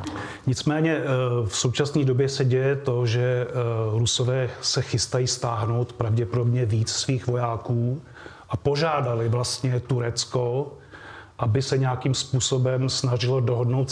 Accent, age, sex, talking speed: native, 30-49, male, 110 wpm